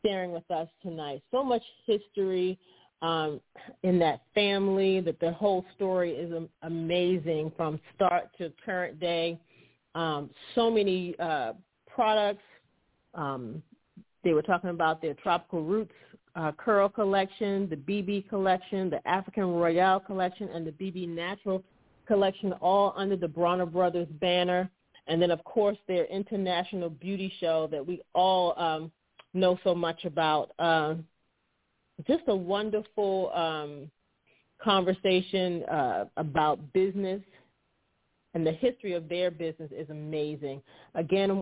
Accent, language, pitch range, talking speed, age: American, English, 165-195 Hz, 130 wpm, 40-59